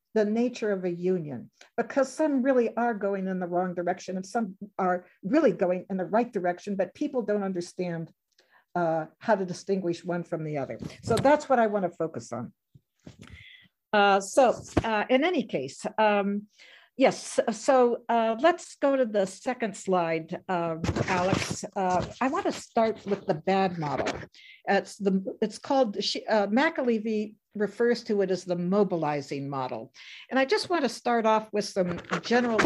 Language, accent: English, American